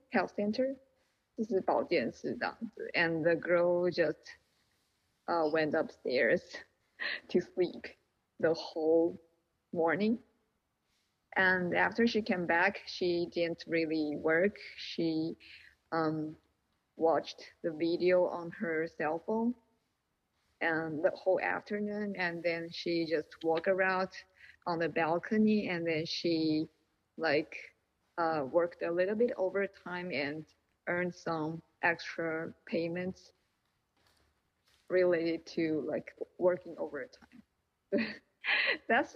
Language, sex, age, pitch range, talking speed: English, female, 20-39, 165-190 Hz, 105 wpm